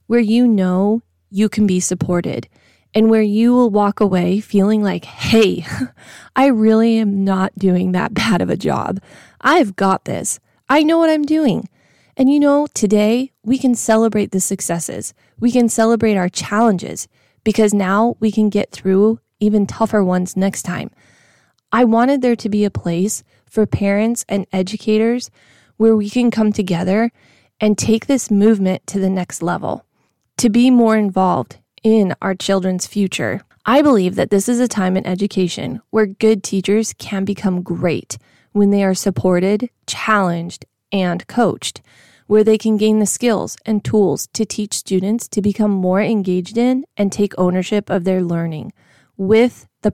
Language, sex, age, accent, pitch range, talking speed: English, female, 20-39, American, 185-225 Hz, 165 wpm